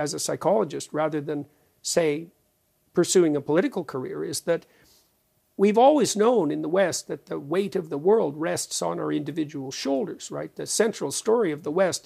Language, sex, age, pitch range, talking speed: English, male, 50-69, 160-215 Hz, 180 wpm